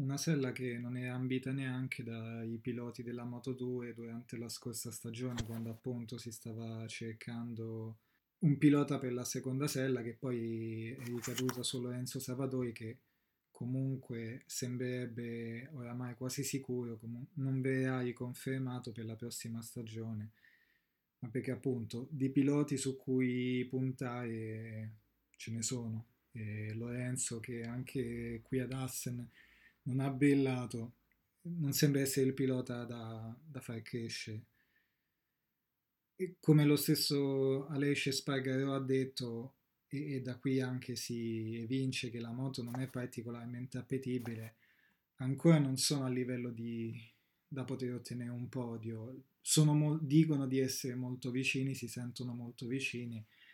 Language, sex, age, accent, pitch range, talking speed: Italian, male, 20-39, native, 115-130 Hz, 135 wpm